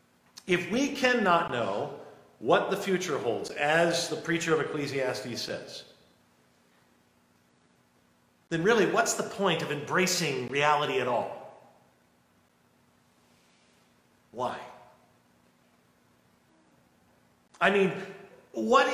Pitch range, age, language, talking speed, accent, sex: 115-185 Hz, 50-69, English, 90 wpm, American, male